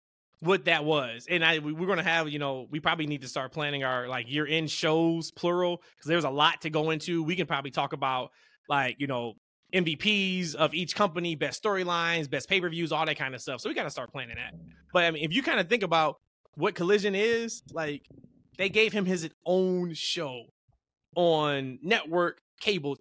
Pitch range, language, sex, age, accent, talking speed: 150-200 Hz, English, male, 20-39, American, 205 wpm